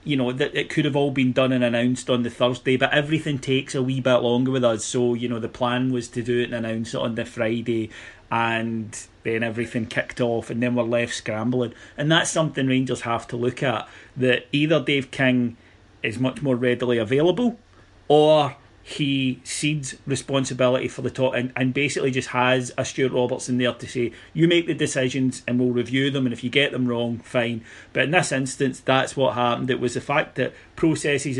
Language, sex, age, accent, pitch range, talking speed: English, male, 30-49, British, 120-135 Hz, 210 wpm